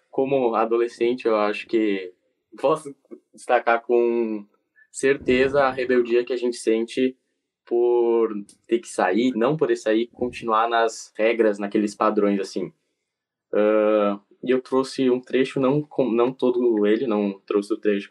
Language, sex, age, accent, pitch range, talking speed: Portuguese, male, 10-29, Brazilian, 110-130 Hz, 140 wpm